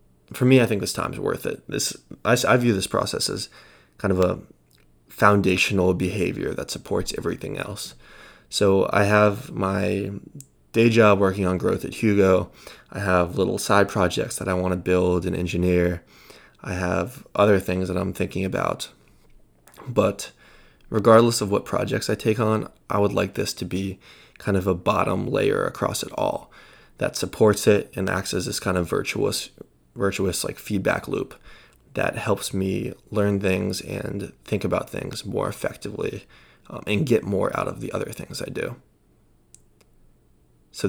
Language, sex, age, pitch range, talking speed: English, male, 20-39, 90-110 Hz, 165 wpm